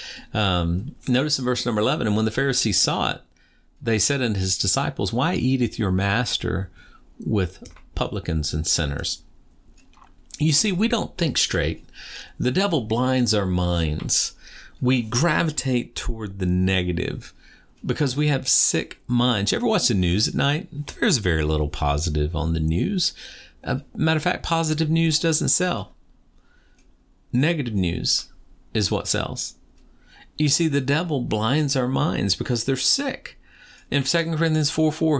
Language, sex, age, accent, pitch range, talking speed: English, male, 50-69, American, 95-145 Hz, 150 wpm